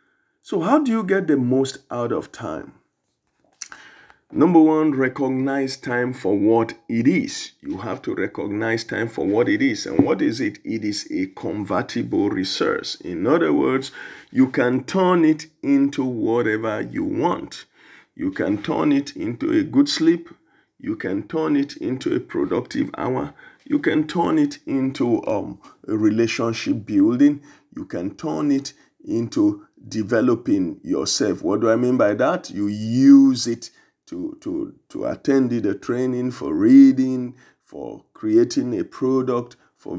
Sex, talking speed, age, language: male, 150 wpm, 50-69, English